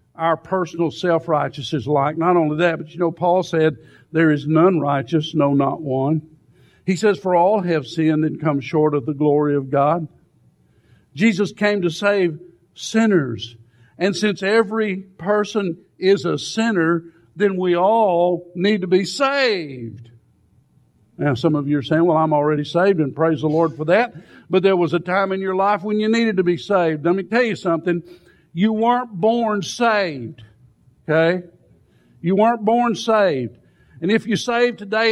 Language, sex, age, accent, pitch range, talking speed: English, male, 60-79, American, 160-220 Hz, 175 wpm